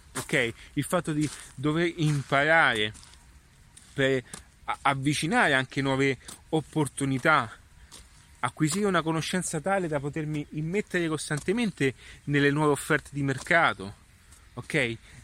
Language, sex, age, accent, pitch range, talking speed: Italian, male, 30-49, native, 130-175 Hz, 100 wpm